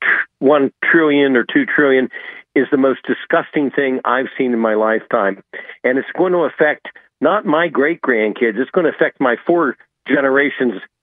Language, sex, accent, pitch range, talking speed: English, male, American, 125-190 Hz, 170 wpm